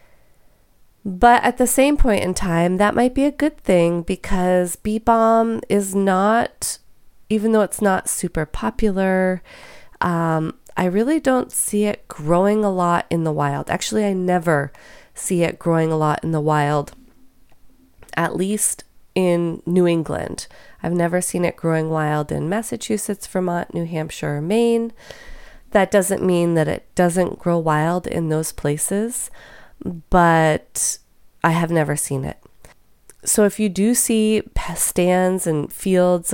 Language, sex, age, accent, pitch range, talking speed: English, female, 30-49, American, 165-200 Hz, 150 wpm